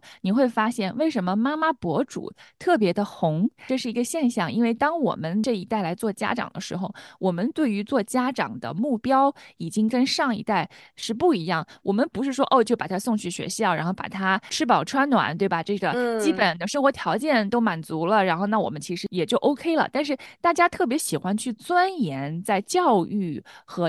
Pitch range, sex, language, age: 185-255 Hz, female, Chinese, 20-39